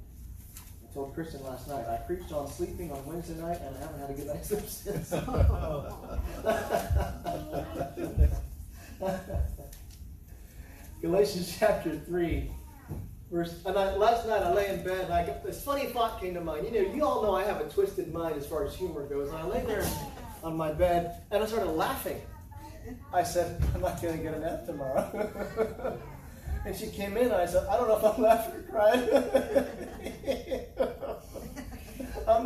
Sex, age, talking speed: male, 30-49, 165 wpm